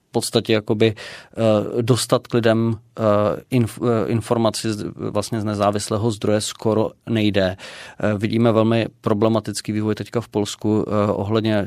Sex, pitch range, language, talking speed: male, 105-115 Hz, Czech, 105 wpm